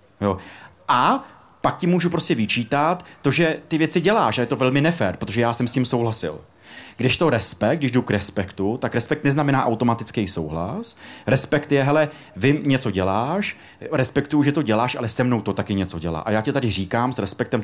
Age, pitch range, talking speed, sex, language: 30-49, 110-140 Hz, 200 wpm, male, Czech